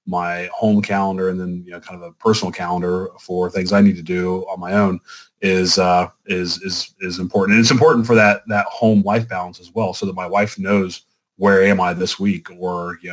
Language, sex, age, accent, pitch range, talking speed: English, male, 30-49, American, 90-110 Hz, 230 wpm